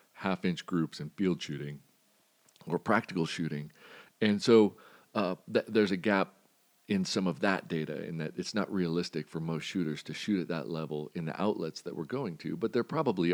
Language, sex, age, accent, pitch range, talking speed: English, male, 40-59, American, 80-100 Hz, 200 wpm